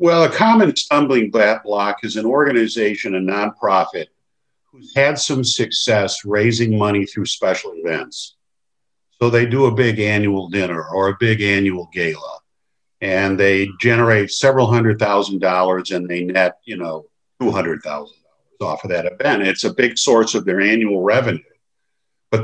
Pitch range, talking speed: 95-120 Hz, 150 wpm